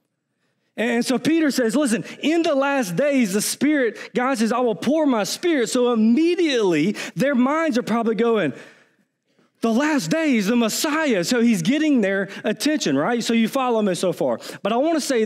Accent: American